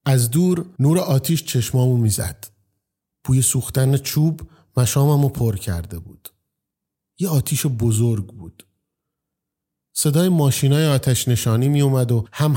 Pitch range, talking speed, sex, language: 115-140 Hz, 115 wpm, male, Persian